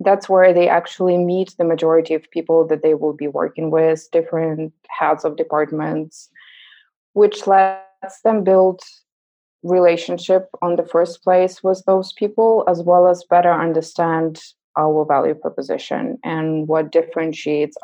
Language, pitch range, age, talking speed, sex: English, 160-195 Hz, 20-39, 140 wpm, female